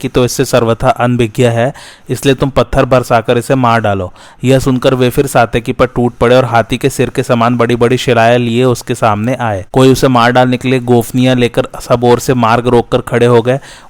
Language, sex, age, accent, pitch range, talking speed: Hindi, male, 30-49, native, 115-130 Hz, 100 wpm